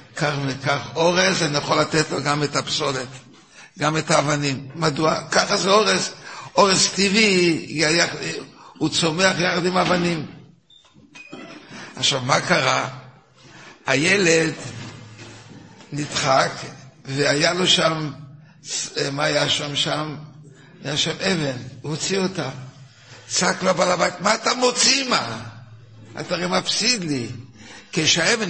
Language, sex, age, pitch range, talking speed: Hebrew, male, 60-79, 135-170 Hz, 115 wpm